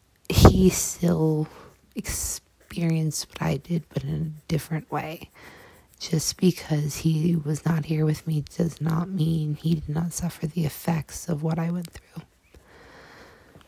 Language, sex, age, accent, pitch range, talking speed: English, female, 20-39, American, 145-165 Hz, 145 wpm